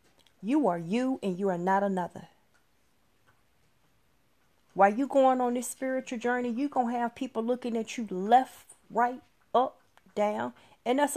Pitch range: 180-240 Hz